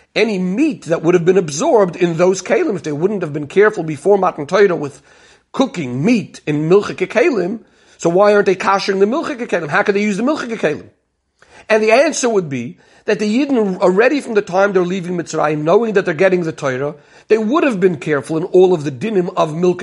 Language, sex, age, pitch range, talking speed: English, male, 50-69, 165-210 Hz, 220 wpm